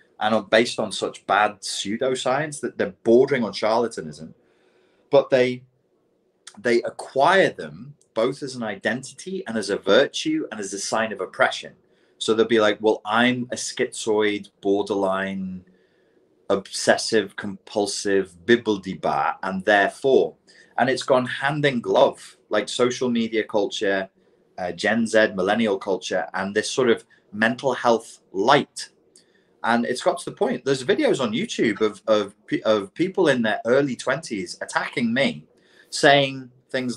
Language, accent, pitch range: English, British, 105-160 Hz